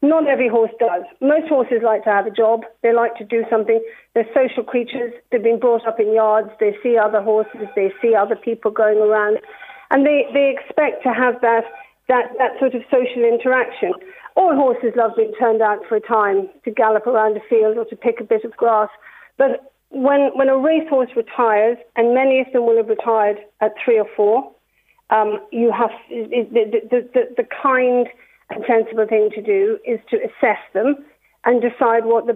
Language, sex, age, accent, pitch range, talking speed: English, female, 50-69, British, 215-260 Hz, 200 wpm